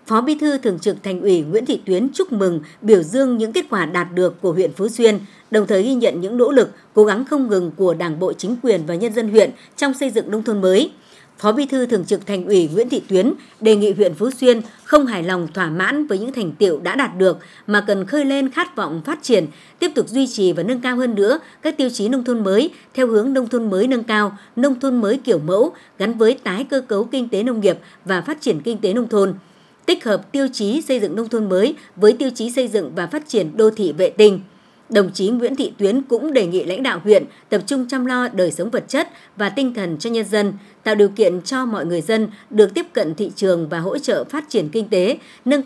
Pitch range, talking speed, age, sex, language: 195-260 Hz, 255 wpm, 60-79, male, Vietnamese